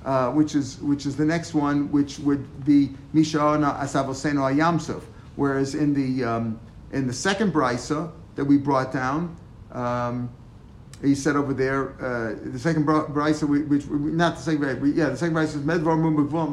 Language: English